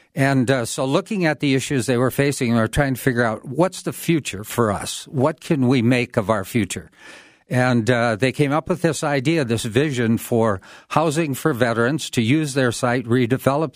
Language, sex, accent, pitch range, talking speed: English, male, American, 115-135 Hz, 205 wpm